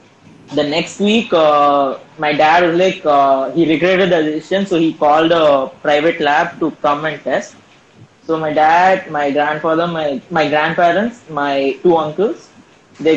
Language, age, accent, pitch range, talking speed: Tamil, 20-39, native, 145-175 Hz, 160 wpm